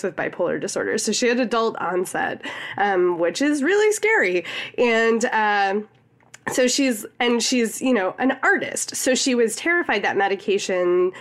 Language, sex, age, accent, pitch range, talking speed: English, female, 20-39, American, 185-240 Hz, 160 wpm